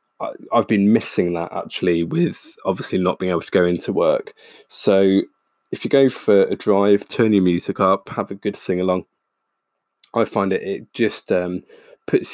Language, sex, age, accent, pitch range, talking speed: English, male, 20-39, British, 90-105 Hz, 175 wpm